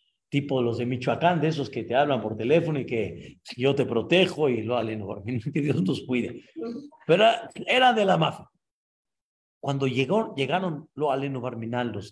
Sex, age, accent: male, 50-69, Mexican